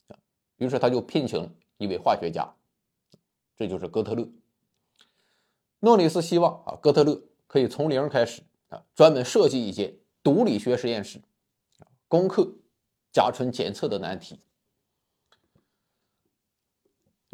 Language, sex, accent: Chinese, male, native